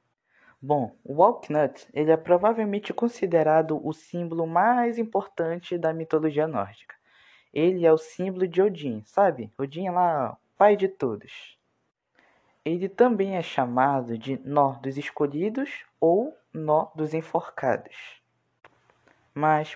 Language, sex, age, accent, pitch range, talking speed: Bengali, female, 20-39, Brazilian, 150-190 Hz, 120 wpm